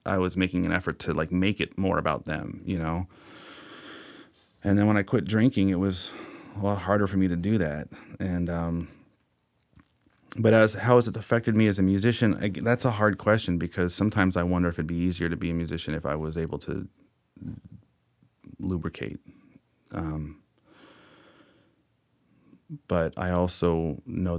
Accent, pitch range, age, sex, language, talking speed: American, 85-105 Hz, 30-49, male, English, 170 wpm